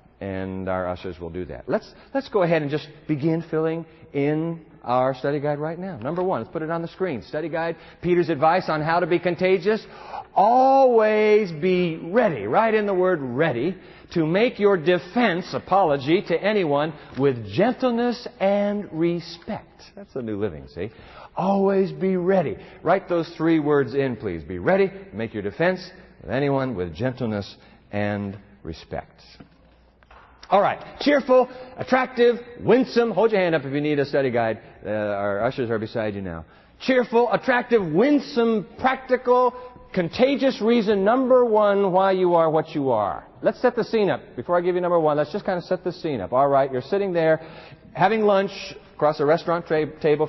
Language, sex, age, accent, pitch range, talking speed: English, male, 50-69, American, 145-210 Hz, 175 wpm